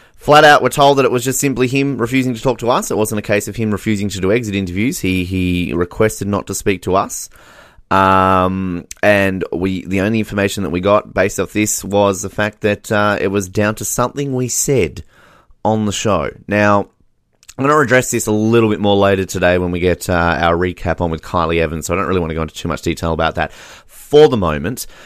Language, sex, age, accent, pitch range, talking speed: English, male, 30-49, Australian, 85-110 Hz, 235 wpm